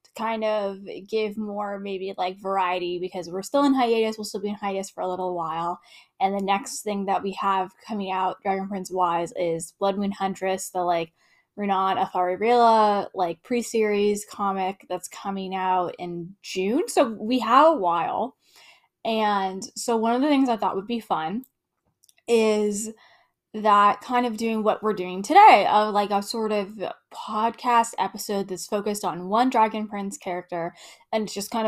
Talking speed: 170 wpm